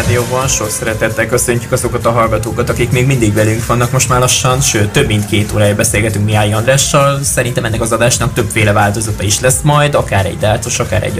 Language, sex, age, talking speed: Hungarian, male, 20-39, 200 wpm